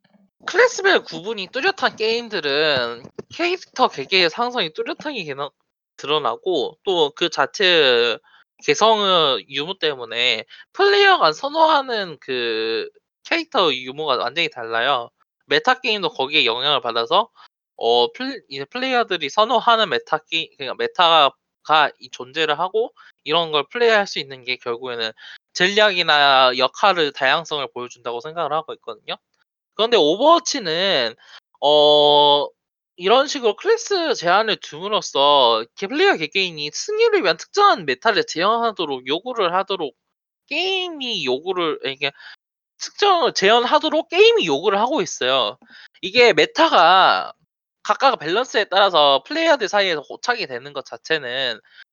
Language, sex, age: Korean, male, 20-39